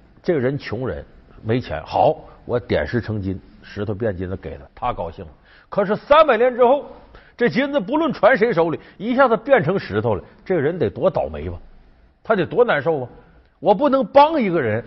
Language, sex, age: Chinese, male, 50-69